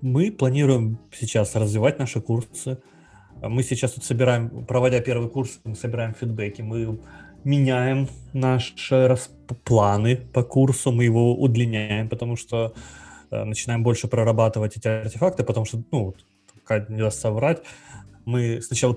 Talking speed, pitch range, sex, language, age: 135 wpm, 110-130 Hz, male, Russian, 20-39